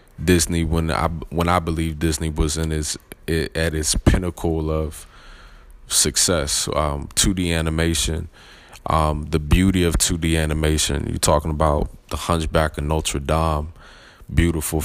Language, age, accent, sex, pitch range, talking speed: English, 20-39, American, male, 75-85 Hz, 135 wpm